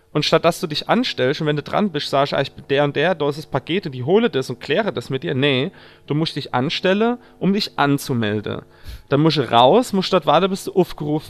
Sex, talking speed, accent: male, 260 wpm, German